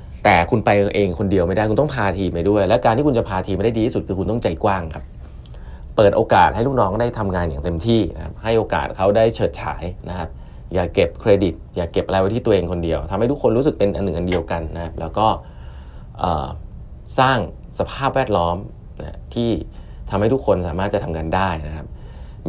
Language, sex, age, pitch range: Thai, male, 20-39, 85-110 Hz